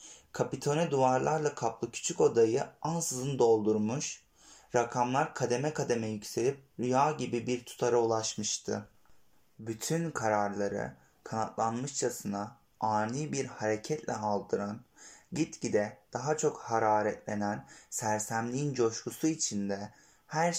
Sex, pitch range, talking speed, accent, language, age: male, 110-140 Hz, 90 wpm, native, Turkish, 30-49